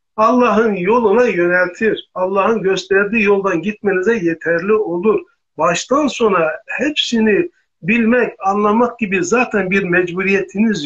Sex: male